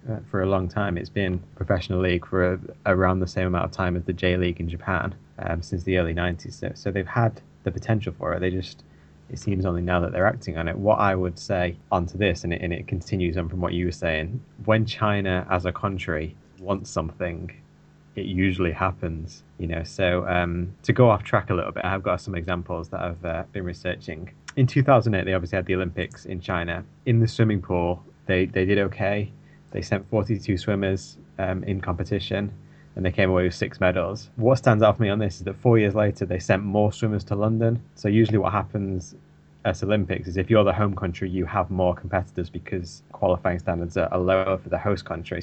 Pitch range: 90-105 Hz